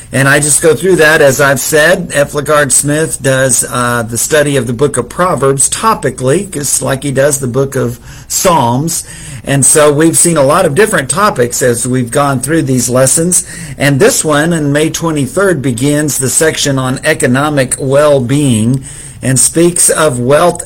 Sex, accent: male, American